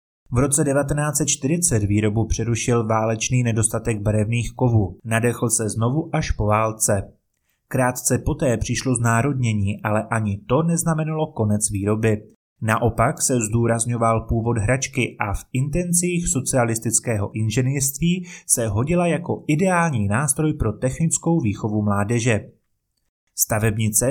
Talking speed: 110 wpm